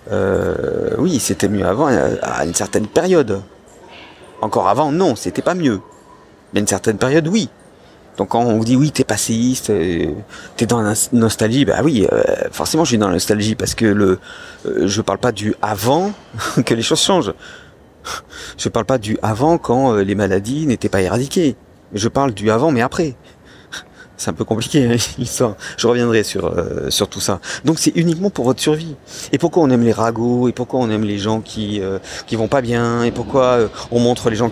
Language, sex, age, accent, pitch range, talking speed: French, male, 50-69, French, 110-170 Hz, 205 wpm